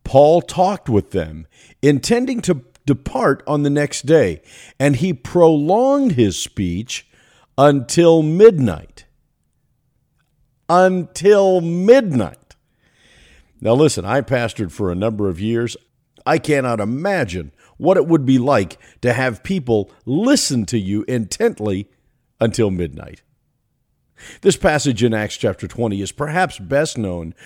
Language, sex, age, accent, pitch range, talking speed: English, male, 50-69, American, 105-165 Hz, 120 wpm